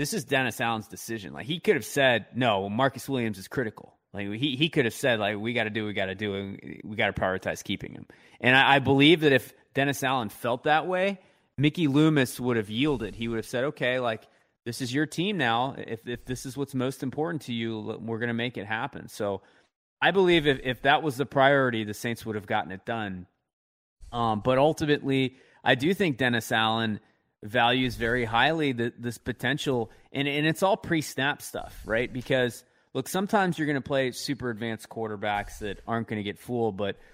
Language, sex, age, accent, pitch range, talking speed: English, male, 30-49, American, 115-140 Hz, 215 wpm